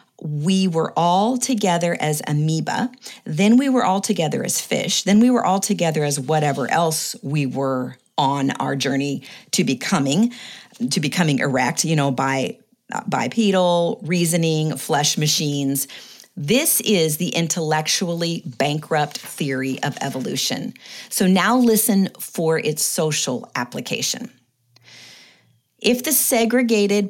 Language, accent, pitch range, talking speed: English, American, 150-200 Hz, 125 wpm